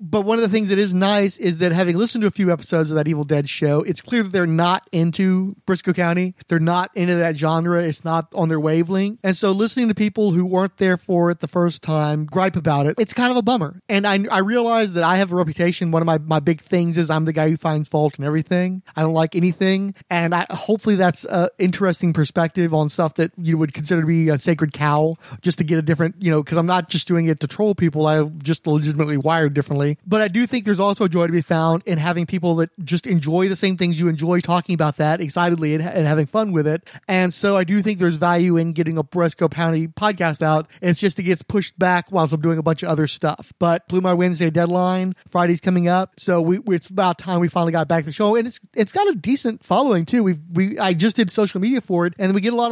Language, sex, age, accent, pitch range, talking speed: English, male, 30-49, American, 165-190 Hz, 260 wpm